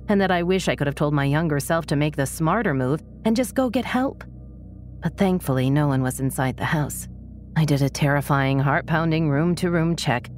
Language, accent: English, American